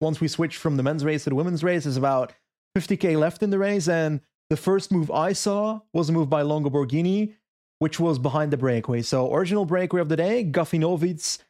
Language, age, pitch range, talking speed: English, 30-49, 150-205 Hz, 220 wpm